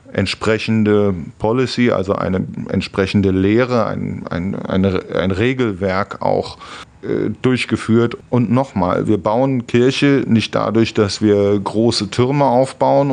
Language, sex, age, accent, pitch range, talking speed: German, male, 40-59, German, 100-120 Hz, 110 wpm